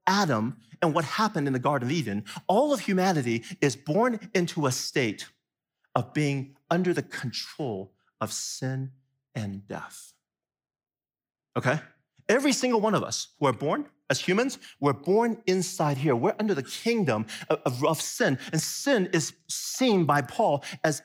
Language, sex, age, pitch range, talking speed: English, male, 40-59, 135-200 Hz, 160 wpm